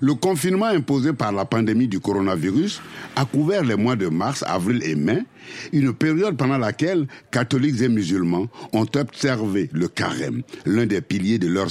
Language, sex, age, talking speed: French, male, 60-79, 170 wpm